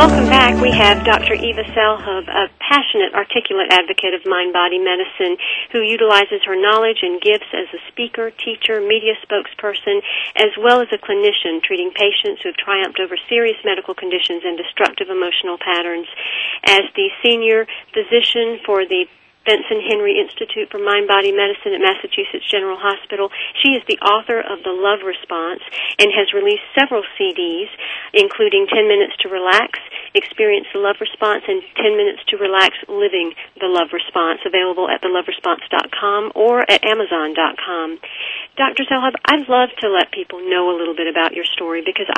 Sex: female